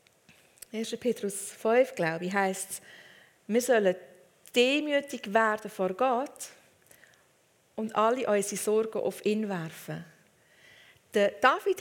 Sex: female